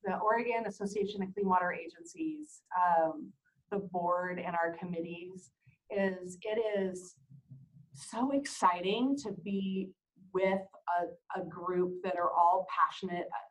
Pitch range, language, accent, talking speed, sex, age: 165-195 Hz, English, American, 125 wpm, female, 30-49